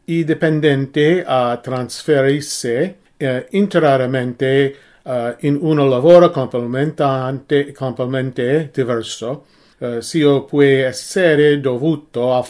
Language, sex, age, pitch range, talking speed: English, male, 40-59, 130-160 Hz, 95 wpm